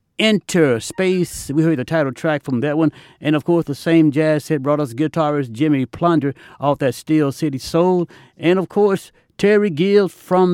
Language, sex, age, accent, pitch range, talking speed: English, male, 60-79, American, 140-170 Hz, 190 wpm